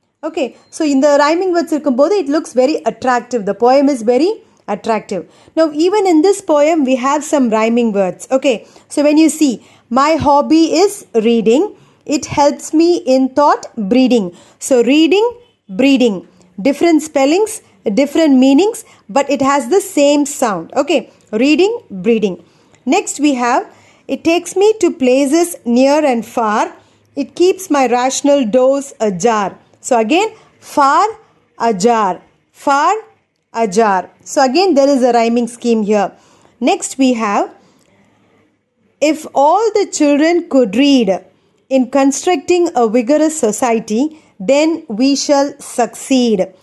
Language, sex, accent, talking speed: Tamil, female, native, 135 wpm